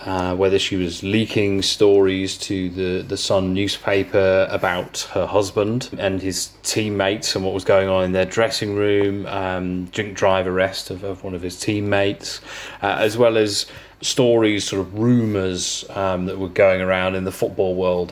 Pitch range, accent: 95-105 Hz, British